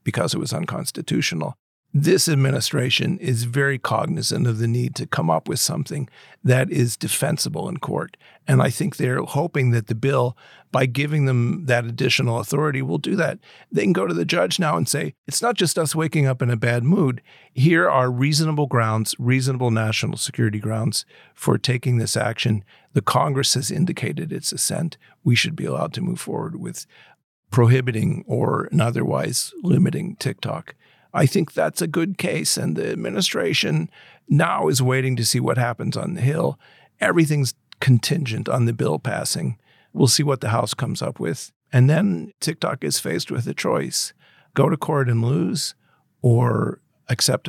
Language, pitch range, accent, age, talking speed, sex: English, 125-160 Hz, American, 50-69, 175 wpm, male